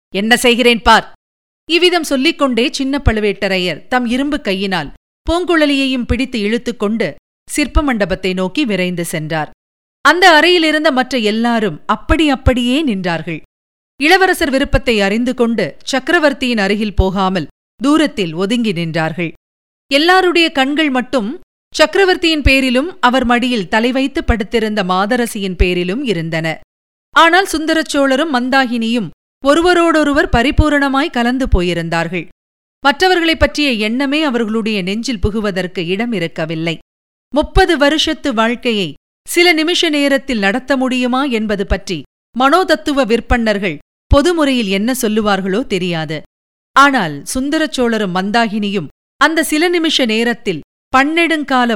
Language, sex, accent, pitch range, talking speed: Tamil, female, native, 200-290 Hz, 100 wpm